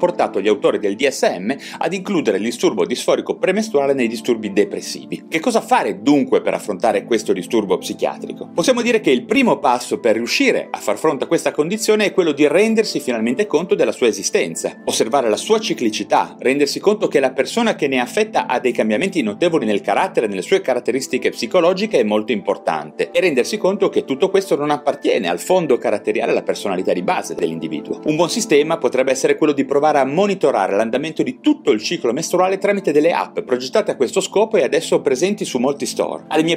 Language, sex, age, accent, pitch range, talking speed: Italian, male, 30-49, native, 155-240 Hz, 195 wpm